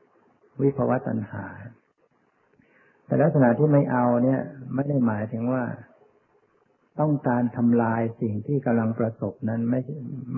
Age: 60-79